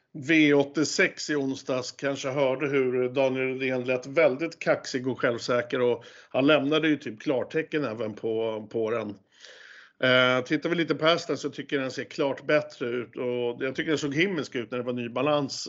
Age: 50-69